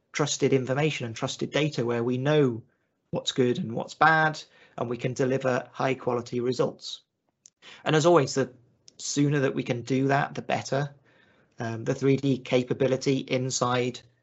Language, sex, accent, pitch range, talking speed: English, male, British, 125-140 Hz, 155 wpm